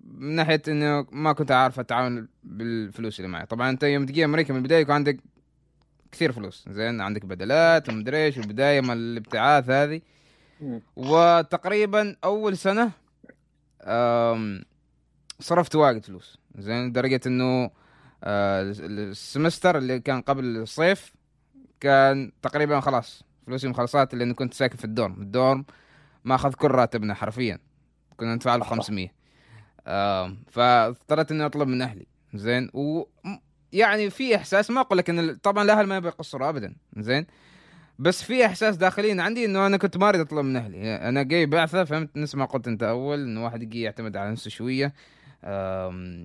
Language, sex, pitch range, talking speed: Arabic, male, 115-155 Hz, 150 wpm